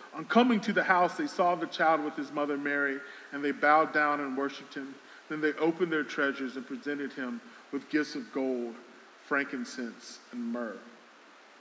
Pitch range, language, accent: 145-205 Hz, English, American